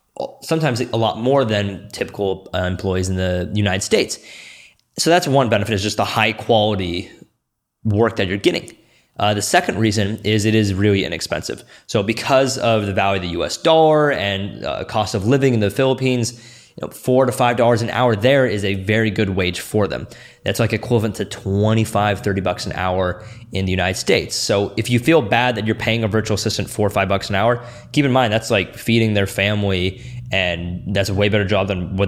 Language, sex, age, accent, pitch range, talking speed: English, male, 20-39, American, 100-120 Hz, 205 wpm